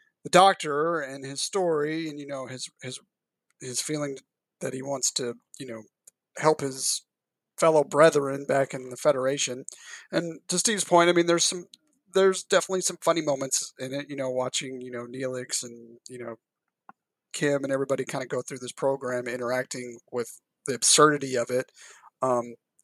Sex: male